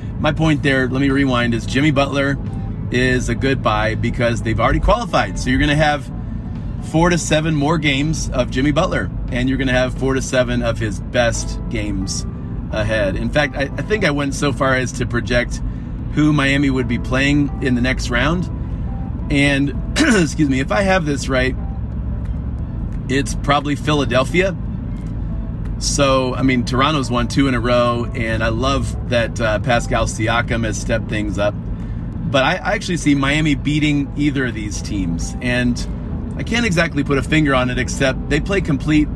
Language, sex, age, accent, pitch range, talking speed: English, male, 30-49, American, 115-145 Hz, 185 wpm